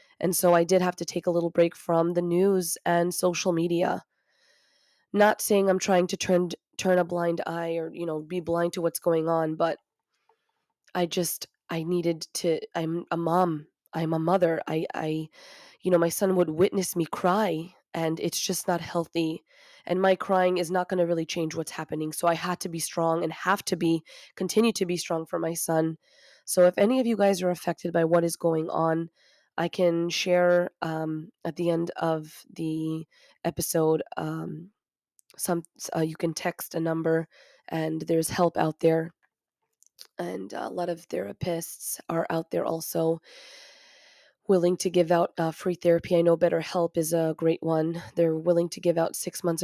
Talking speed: 190 wpm